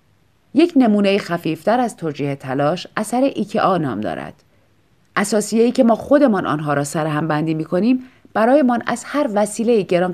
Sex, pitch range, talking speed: female, 150-230 Hz, 160 wpm